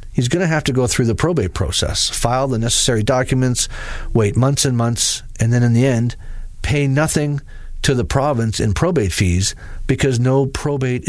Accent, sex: American, male